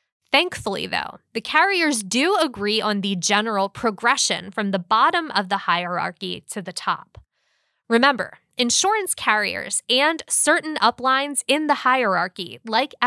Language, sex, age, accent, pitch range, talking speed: English, female, 20-39, American, 195-270 Hz, 135 wpm